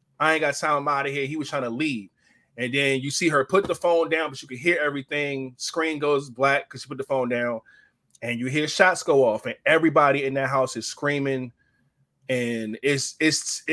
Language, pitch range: English, 130-180 Hz